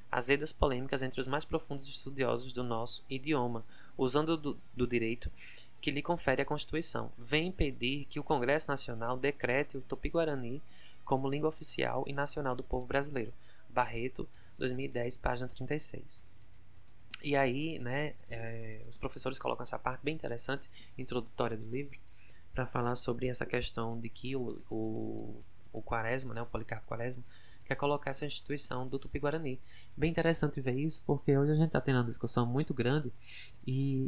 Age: 20-39